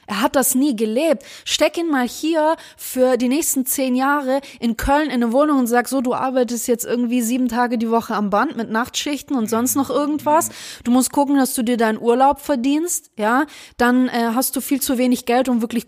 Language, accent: German, German